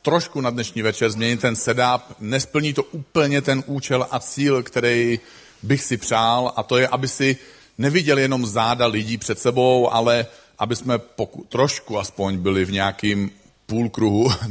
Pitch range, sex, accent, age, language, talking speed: 110-135 Hz, male, native, 40-59, Czech, 160 wpm